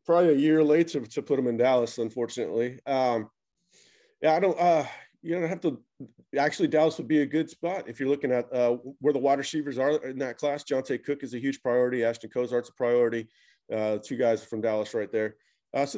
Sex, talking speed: male, 220 wpm